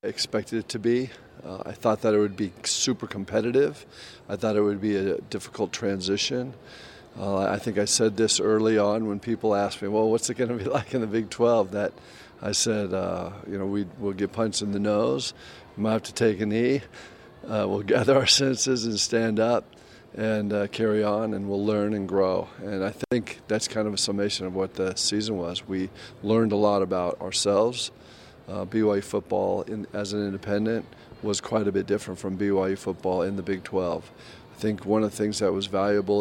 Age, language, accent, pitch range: 40-59, English, American, 100-110 Hz